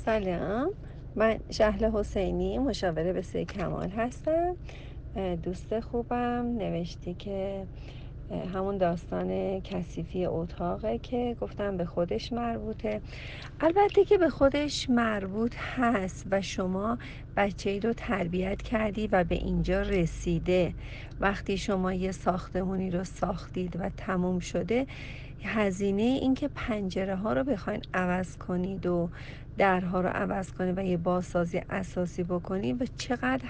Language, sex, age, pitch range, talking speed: Persian, female, 40-59, 175-215 Hz, 120 wpm